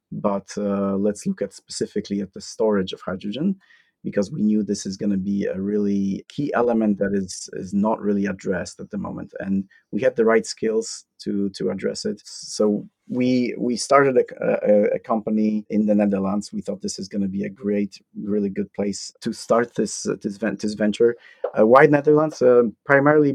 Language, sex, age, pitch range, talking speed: English, male, 30-49, 100-110 Hz, 195 wpm